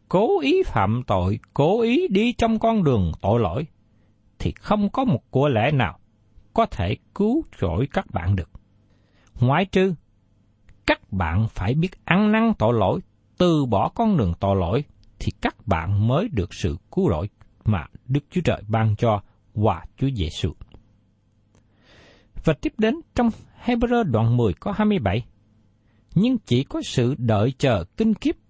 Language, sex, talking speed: Vietnamese, male, 160 wpm